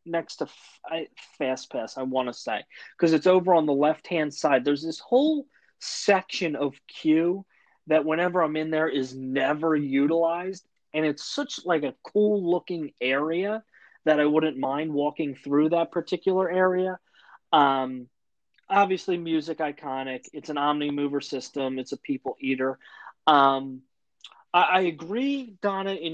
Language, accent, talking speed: English, American, 150 wpm